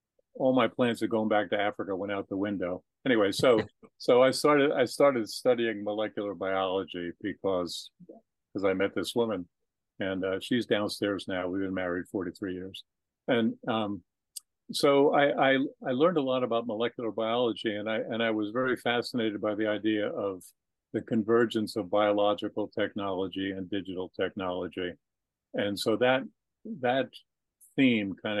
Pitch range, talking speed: 95-110 Hz, 160 wpm